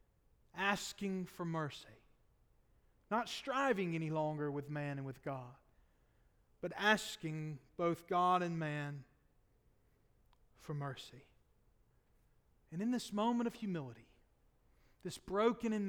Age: 40-59